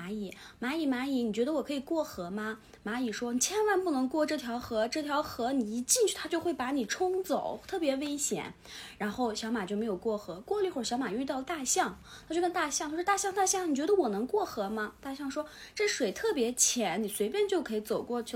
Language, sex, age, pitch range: Chinese, female, 20-39, 215-295 Hz